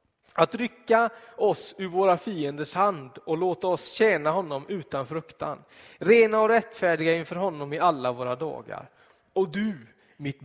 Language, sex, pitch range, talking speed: Swedish, male, 130-190 Hz, 150 wpm